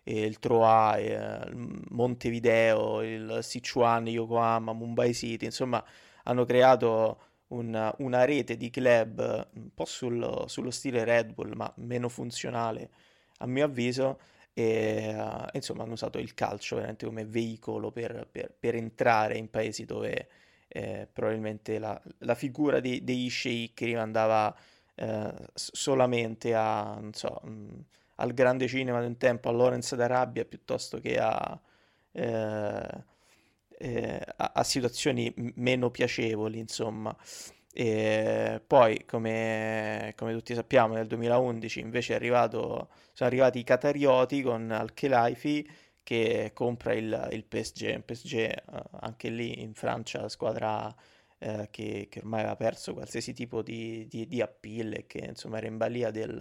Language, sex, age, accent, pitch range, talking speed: Italian, male, 20-39, native, 110-125 Hz, 140 wpm